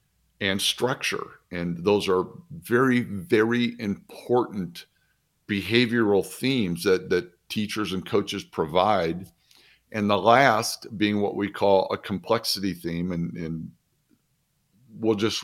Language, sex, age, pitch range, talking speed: English, male, 50-69, 95-125 Hz, 115 wpm